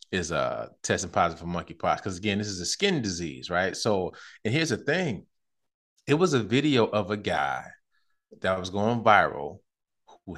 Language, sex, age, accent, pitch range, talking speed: English, male, 20-39, American, 105-130 Hz, 180 wpm